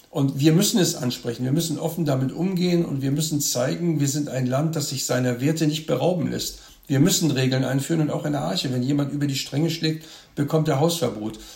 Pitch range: 130-155 Hz